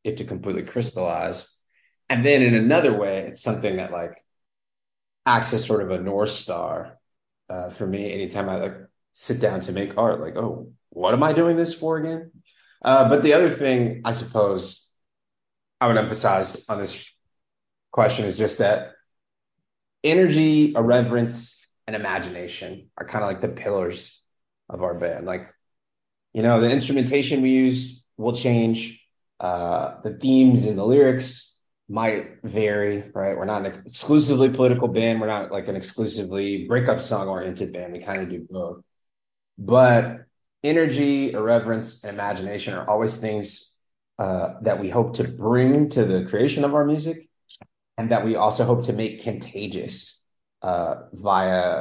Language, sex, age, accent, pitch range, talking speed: English, male, 30-49, American, 100-130 Hz, 160 wpm